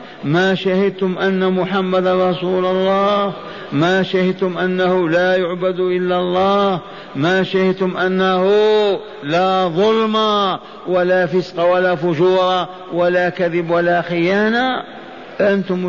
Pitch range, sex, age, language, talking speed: 180-210 Hz, male, 50-69, Arabic, 100 wpm